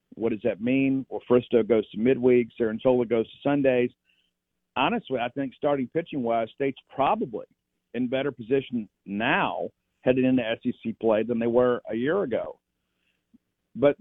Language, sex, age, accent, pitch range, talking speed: English, male, 50-69, American, 110-135 Hz, 150 wpm